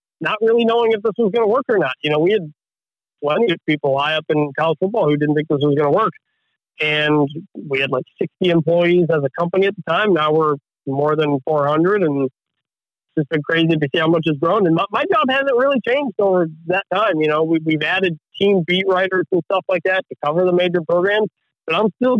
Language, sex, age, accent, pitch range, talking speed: English, male, 40-59, American, 145-185 Hz, 240 wpm